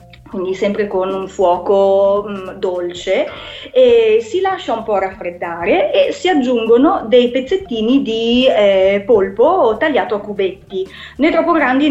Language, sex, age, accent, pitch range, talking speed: Italian, female, 30-49, native, 195-275 Hz, 135 wpm